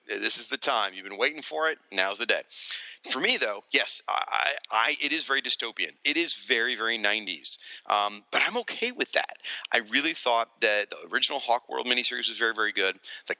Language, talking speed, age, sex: English, 210 wpm, 40-59, male